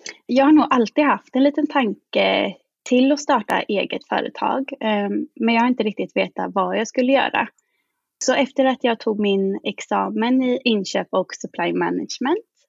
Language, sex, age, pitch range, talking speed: Swedish, female, 20-39, 205-285 Hz, 165 wpm